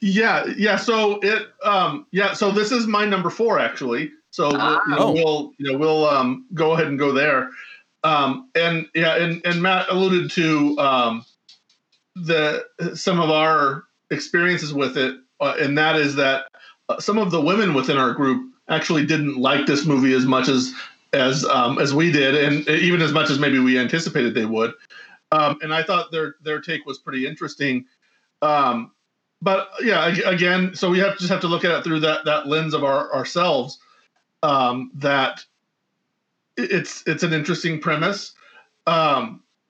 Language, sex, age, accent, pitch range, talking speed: English, male, 40-59, American, 140-180 Hz, 170 wpm